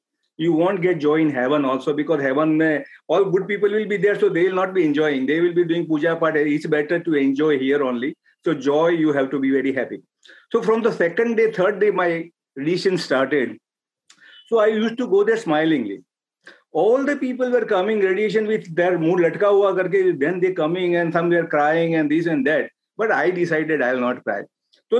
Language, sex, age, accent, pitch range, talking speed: English, male, 50-69, Indian, 155-215 Hz, 205 wpm